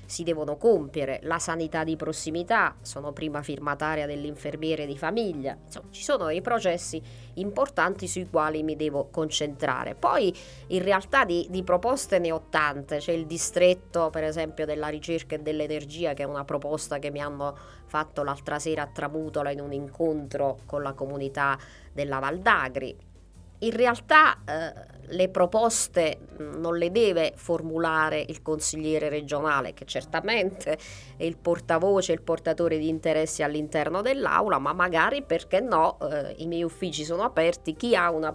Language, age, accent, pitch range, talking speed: Italian, 30-49, native, 145-175 Hz, 155 wpm